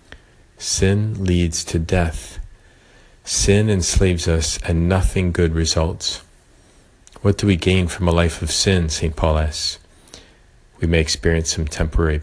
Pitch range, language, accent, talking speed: 80-90 Hz, English, American, 135 wpm